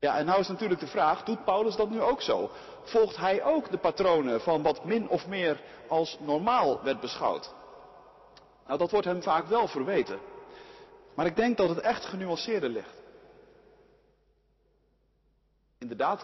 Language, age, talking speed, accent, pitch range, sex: Dutch, 40-59, 160 wpm, Dutch, 165-240 Hz, male